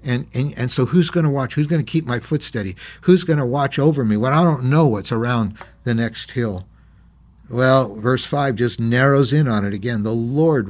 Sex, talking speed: male, 215 wpm